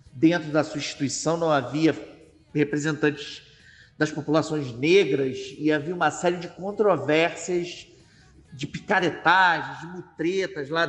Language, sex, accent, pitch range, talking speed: Portuguese, male, Brazilian, 150-180 Hz, 115 wpm